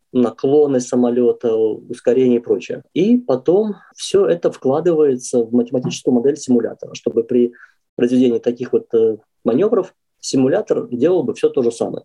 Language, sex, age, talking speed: Russian, male, 20-39, 135 wpm